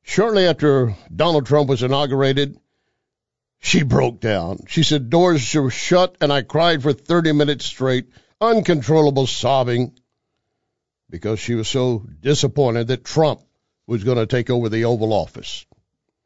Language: English